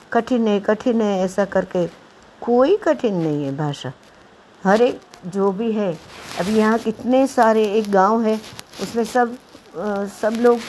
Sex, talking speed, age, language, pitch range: female, 155 wpm, 60-79, Hindi, 170-240 Hz